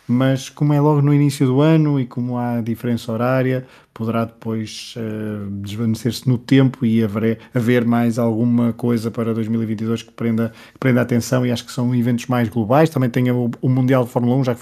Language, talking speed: Portuguese, 200 wpm